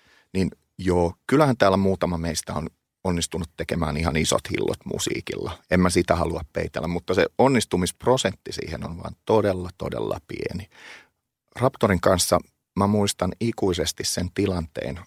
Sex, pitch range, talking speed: male, 90-115 Hz, 135 wpm